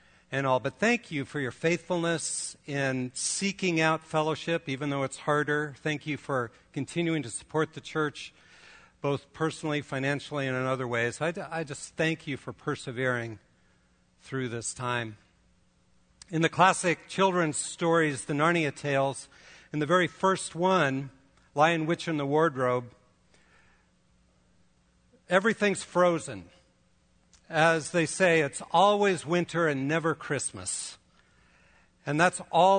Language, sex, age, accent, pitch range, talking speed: English, male, 60-79, American, 135-175 Hz, 135 wpm